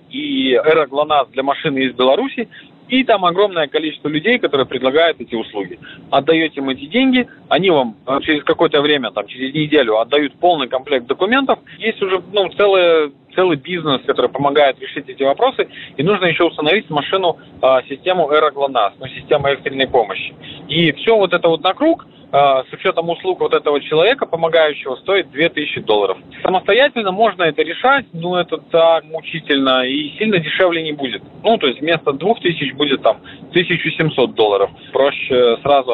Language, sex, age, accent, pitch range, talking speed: Russian, male, 30-49, native, 140-185 Hz, 160 wpm